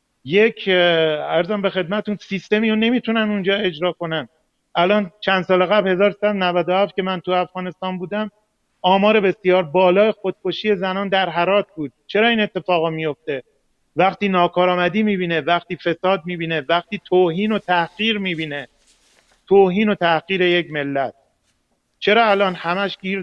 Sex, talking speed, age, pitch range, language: male, 140 wpm, 40-59, 165-200 Hz, Persian